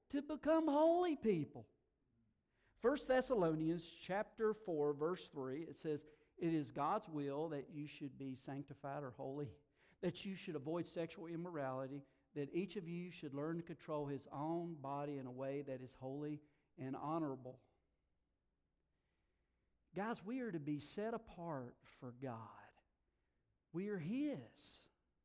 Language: English